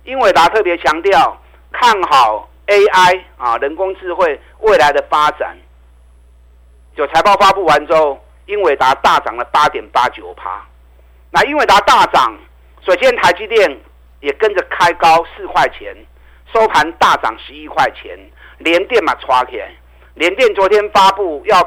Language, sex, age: Chinese, male, 50-69